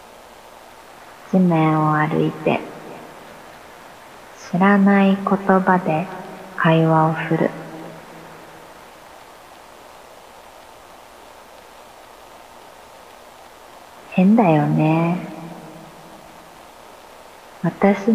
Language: Japanese